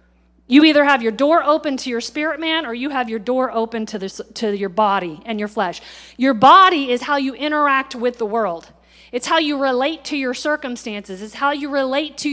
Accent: American